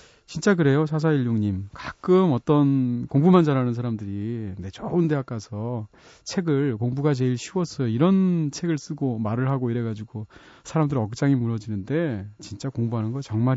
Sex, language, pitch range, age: male, Korean, 110-165 Hz, 40-59